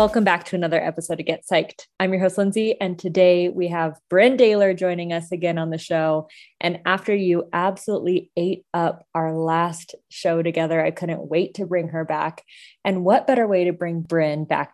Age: 20-39